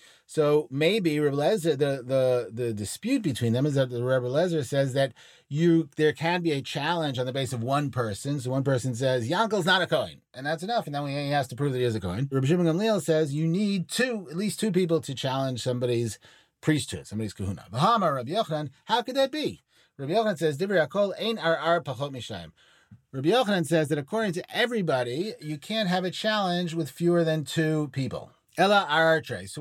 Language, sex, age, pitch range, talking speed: English, male, 30-49, 130-175 Hz, 195 wpm